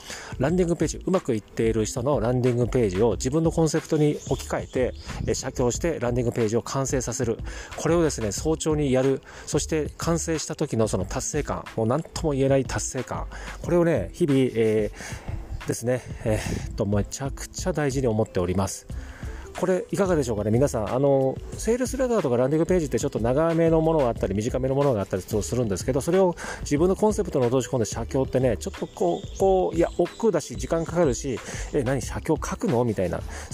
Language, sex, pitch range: Japanese, male, 110-160 Hz